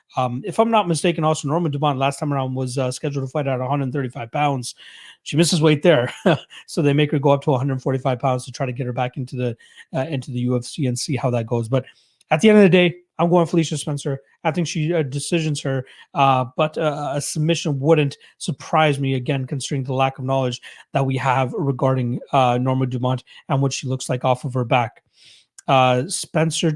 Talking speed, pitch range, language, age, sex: 220 wpm, 130-160 Hz, English, 30-49, male